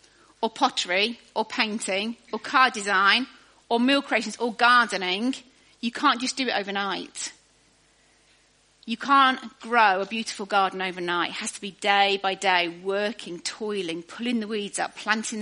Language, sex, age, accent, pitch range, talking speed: English, female, 30-49, British, 205-260 Hz, 150 wpm